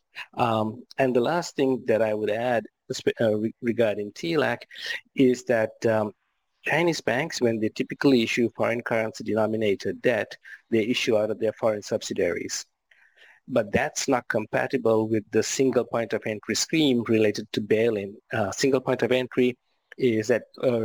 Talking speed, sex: 155 wpm, male